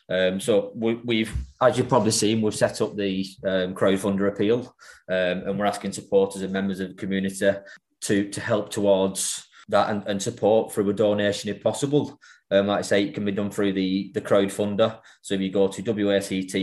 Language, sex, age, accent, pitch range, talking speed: English, male, 20-39, British, 95-105 Hz, 200 wpm